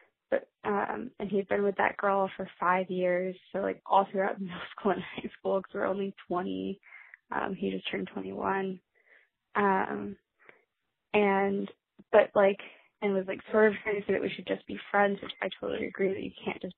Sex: female